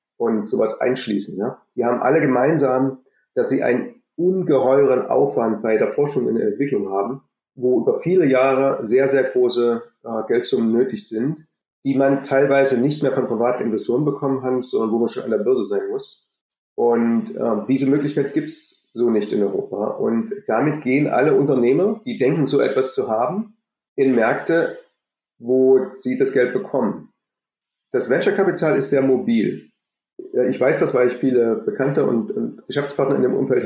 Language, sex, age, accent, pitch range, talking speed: English, male, 30-49, German, 125-205 Hz, 170 wpm